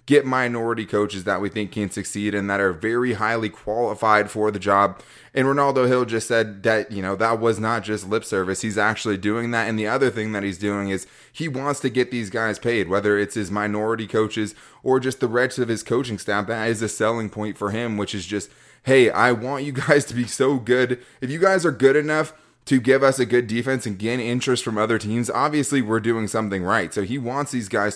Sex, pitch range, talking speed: male, 105-125 Hz, 235 wpm